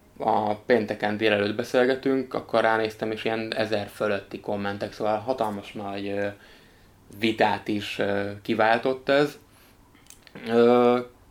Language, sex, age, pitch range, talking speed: Hungarian, male, 20-39, 105-120 Hz, 100 wpm